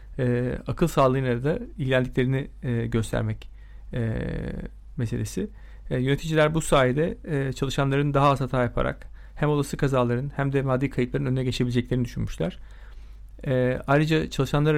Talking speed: 105 wpm